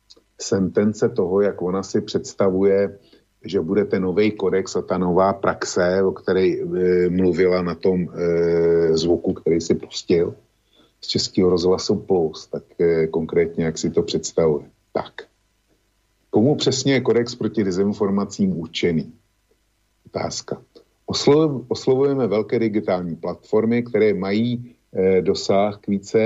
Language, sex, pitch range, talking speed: Slovak, male, 90-110 Hz, 120 wpm